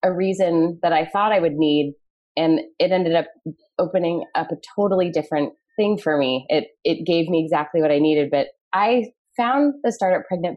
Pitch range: 155-190 Hz